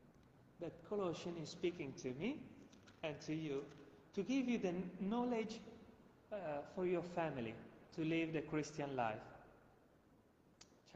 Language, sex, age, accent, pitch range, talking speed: Italian, male, 30-49, native, 125-175 Hz, 130 wpm